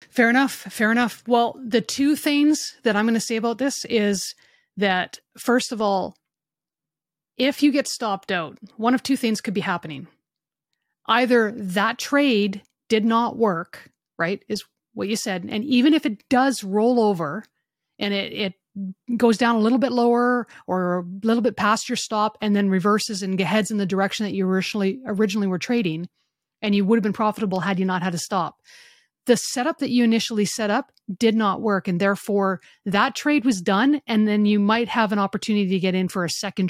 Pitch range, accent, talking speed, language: 195-240 Hz, American, 200 wpm, English